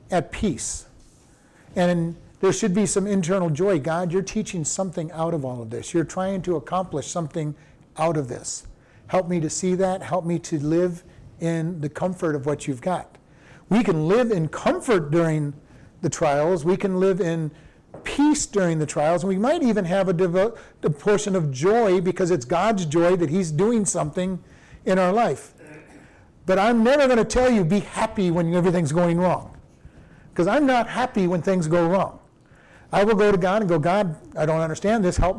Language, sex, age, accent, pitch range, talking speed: English, male, 40-59, American, 160-200 Hz, 190 wpm